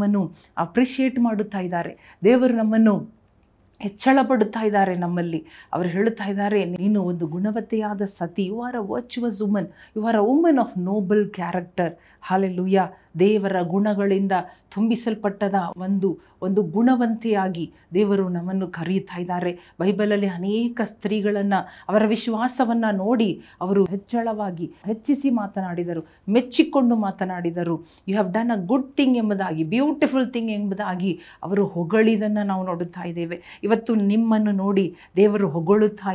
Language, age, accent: Kannada, 40-59, native